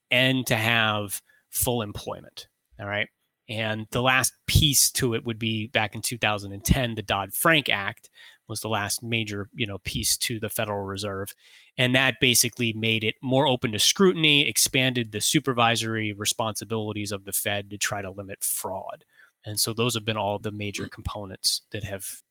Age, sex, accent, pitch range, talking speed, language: 20-39, male, American, 105-130 Hz, 170 wpm, English